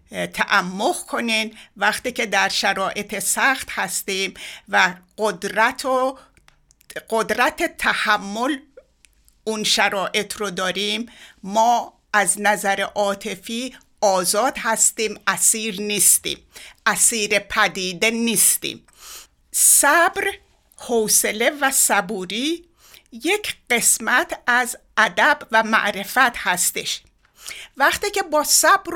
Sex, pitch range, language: female, 205-265 Hz, Persian